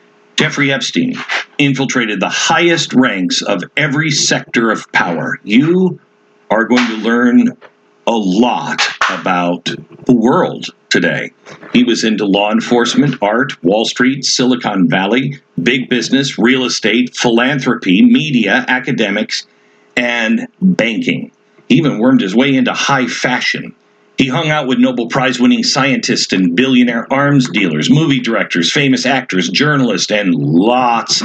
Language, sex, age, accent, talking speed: English, male, 50-69, American, 130 wpm